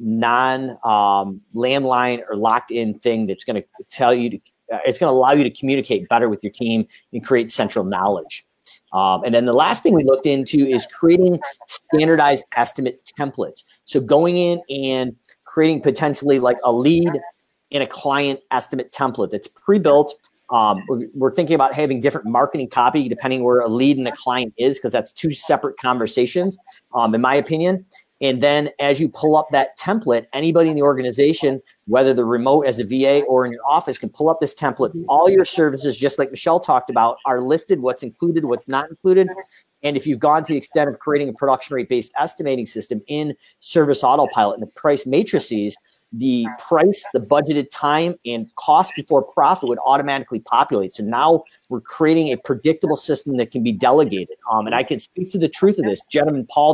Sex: male